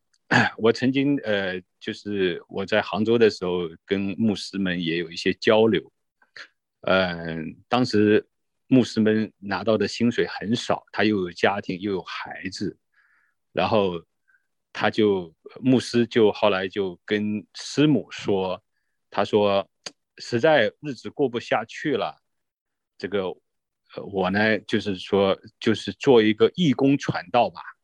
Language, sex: English, male